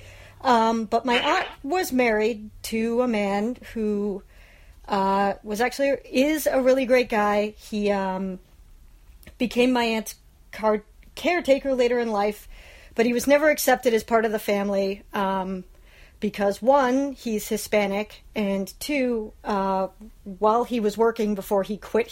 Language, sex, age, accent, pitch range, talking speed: English, female, 40-59, American, 200-235 Hz, 145 wpm